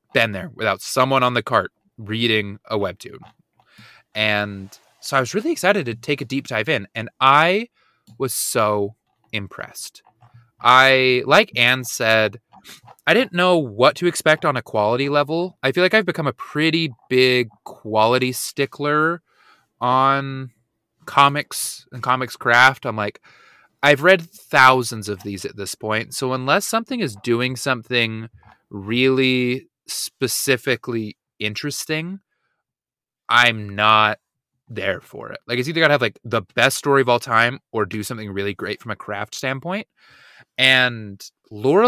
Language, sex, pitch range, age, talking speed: English, male, 110-145 Hz, 20-39, 150 wpm